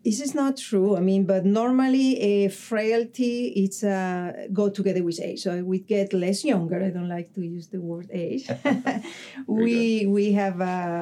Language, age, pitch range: English, 40-59, 175-205 Hz